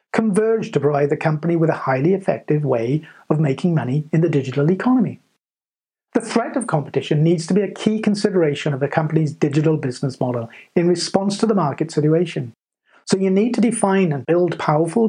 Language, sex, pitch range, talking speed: English, male, 150-205 Hz, 185 wpm